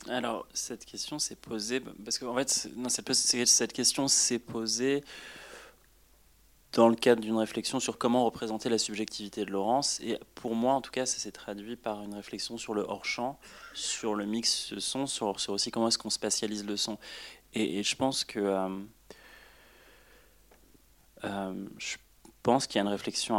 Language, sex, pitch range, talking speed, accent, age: French, male, 100-115 Hz, 170 wpm, French, 20-39